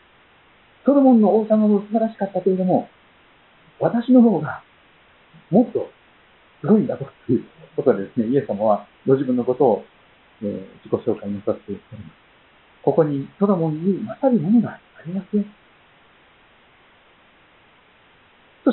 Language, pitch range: Japanese, 155-210 Hz